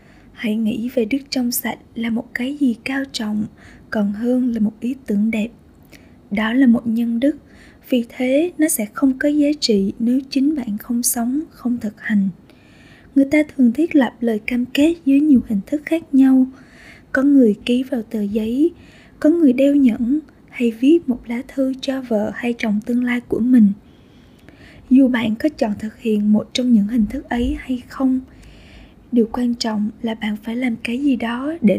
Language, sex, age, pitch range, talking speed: Vietnamese, female, 20-39, 220-270 Hz, 195 wpm